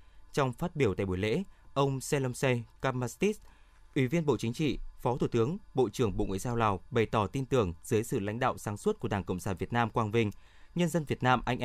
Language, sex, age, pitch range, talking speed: Vietnamese, male, 20-39, 110-145 Hz, 235 wpm